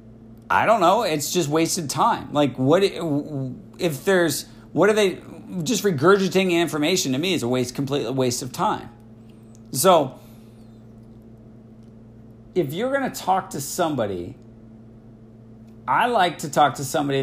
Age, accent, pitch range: 40-59, American, 115-165 Hz